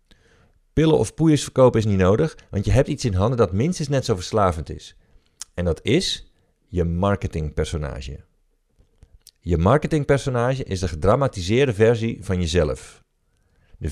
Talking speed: 140 wpm